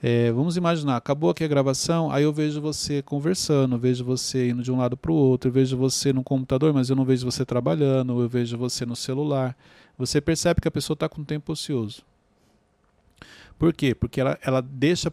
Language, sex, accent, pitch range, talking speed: Portuguese, male, Brazilian, 125-170 Hz, 205 wpm